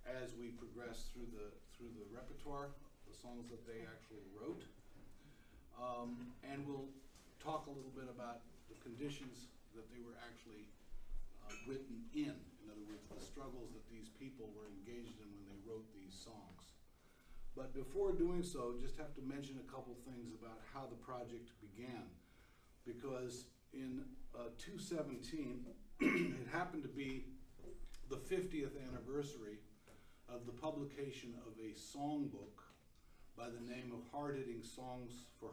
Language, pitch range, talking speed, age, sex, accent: English, 110-135 Hz, 150 wpm, 50-69, male, American